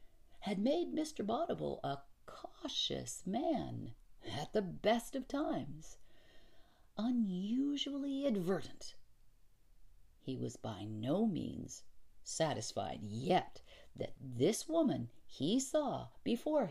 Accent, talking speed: American, 95 wpm